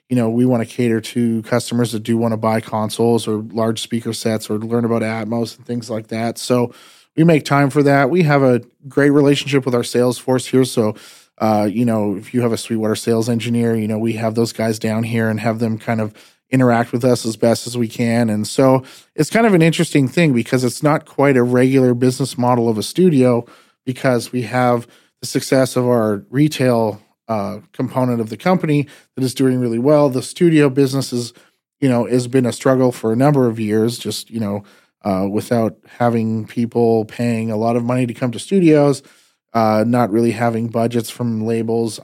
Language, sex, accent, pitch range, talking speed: English, male, American, 115-130 Hz, 210 wpm